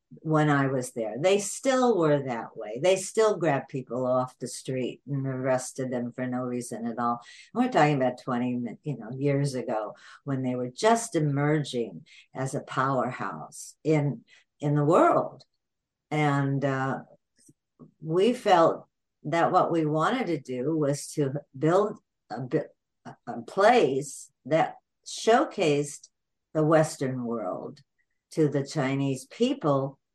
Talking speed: 135 wpm